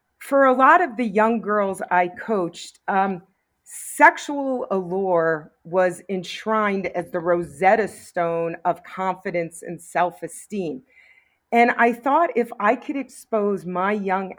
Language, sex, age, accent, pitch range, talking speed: English, female, 40-59, American, 180-230 Hz, 130 wpm